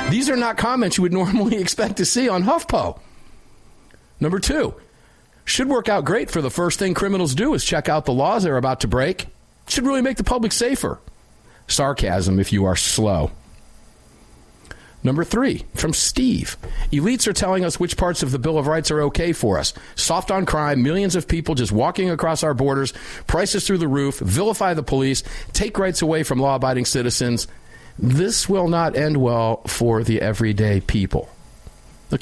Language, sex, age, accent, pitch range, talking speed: English, male, 50-69, American, 130-190 Hz, 180 wpm